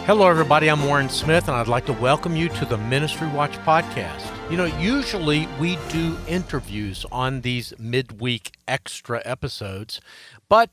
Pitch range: 115-160 Hz